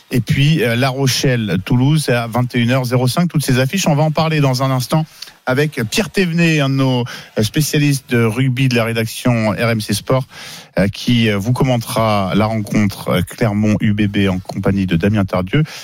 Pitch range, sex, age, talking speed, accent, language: 115-150 Hz, male, 40-59, 165 wpm, French, French